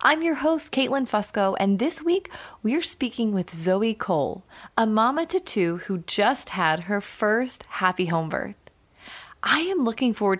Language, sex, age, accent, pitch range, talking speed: English, female, 30-49, American, 185-255 Hz, 165 wpm